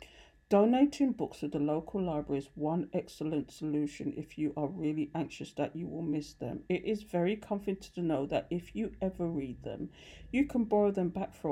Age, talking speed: 50-69, 200 wpm